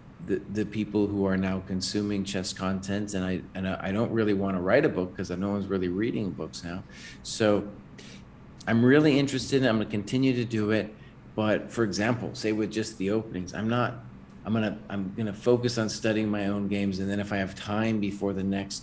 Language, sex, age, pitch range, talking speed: English, male, 40-59, 95-120 Hz, 225 wpm